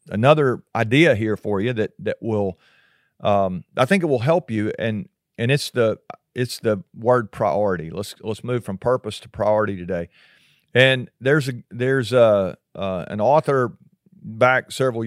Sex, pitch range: male, 105-130 Hz